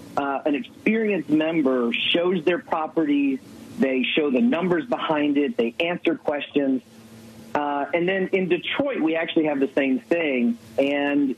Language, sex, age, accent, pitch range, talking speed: English, male, 40-59, American, 130-185 Hz, 150 wpm